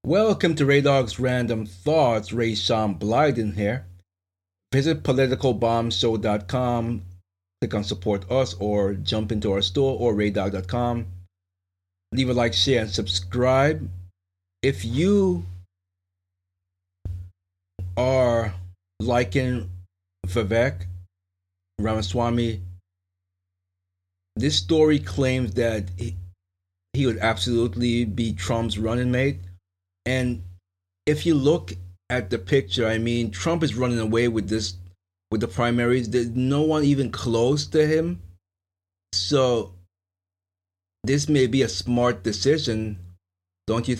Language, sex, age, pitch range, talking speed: English, male, 30-49, 90-125 Hz, 110 wpm